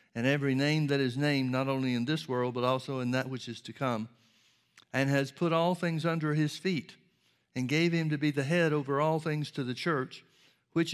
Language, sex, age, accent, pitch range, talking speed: English, male, 60-79, American, 125-155 Hz, 225 wpm